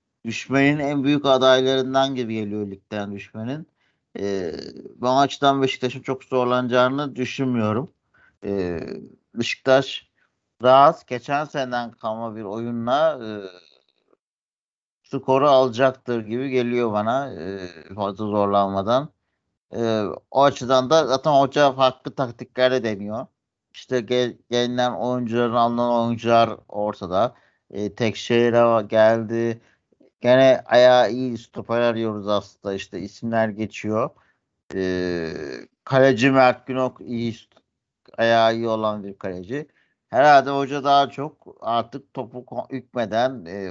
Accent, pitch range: native, 110-130 Hz